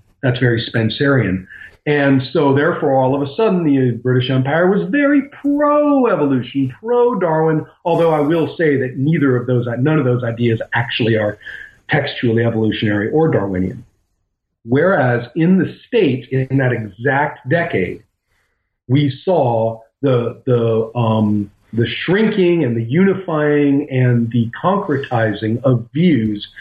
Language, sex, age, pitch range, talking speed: English, male, 50-69, 110-145 Hz, 130 wpm